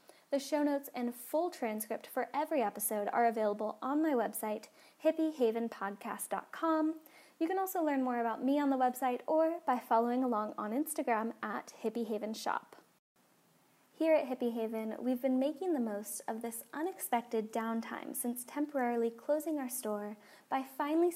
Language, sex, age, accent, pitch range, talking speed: English, female, 10-29, American, 225-280 Hz, 150 wpm